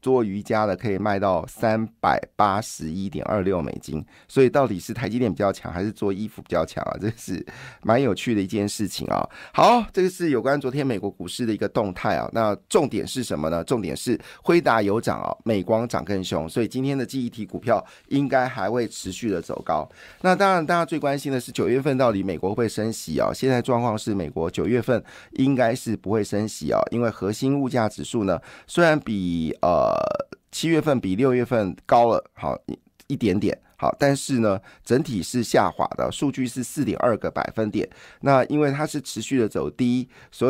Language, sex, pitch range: Chinese, male, 100-135 Hz